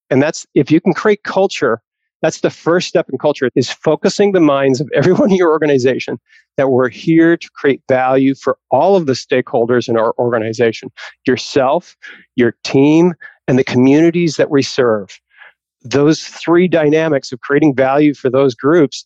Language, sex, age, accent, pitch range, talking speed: English, male, 40-59, American, 135-165 Hz, 170 wpm